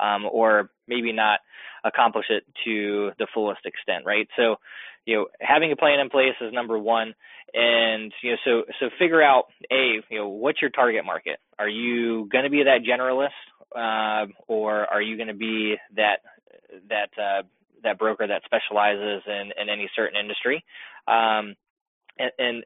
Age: 20-39